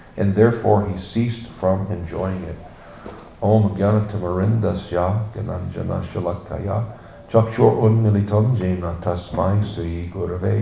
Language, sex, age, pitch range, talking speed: English, male, 50-69, 90-110 Hz, 100 wpm